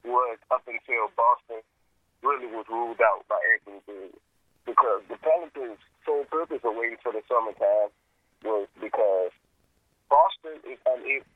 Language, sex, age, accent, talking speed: English, male, 30-49, American, 135 wpm